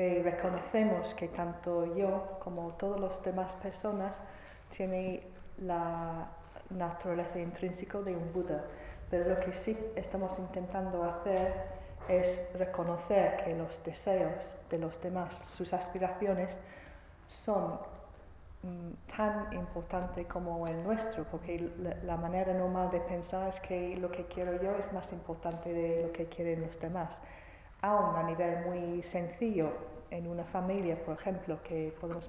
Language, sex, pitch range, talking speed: Italian, female, 170-190 Hz, 135 wpm